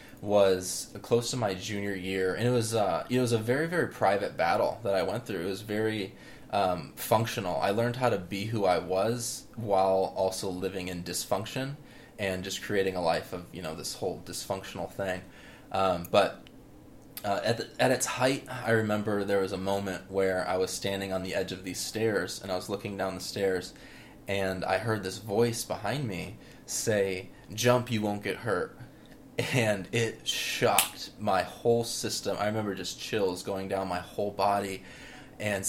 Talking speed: 185 wpm